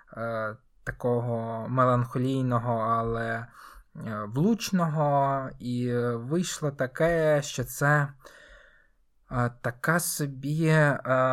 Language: Ukrainian